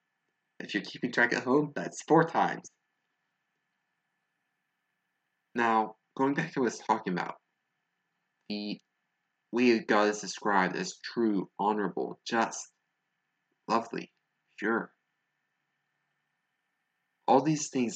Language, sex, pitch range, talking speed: English, male, 105-130 Hz, 105 wpm